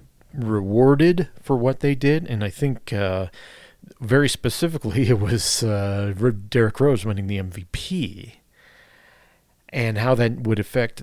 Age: 40-59